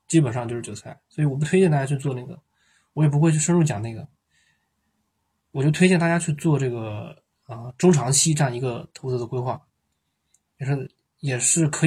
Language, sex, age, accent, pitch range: Chinese, male, 20-39, native, 120-165 Hz